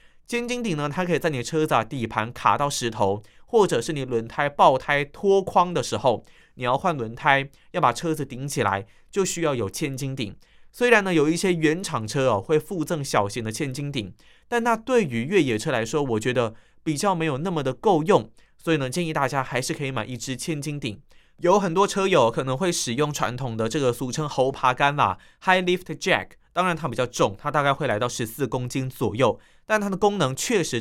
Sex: male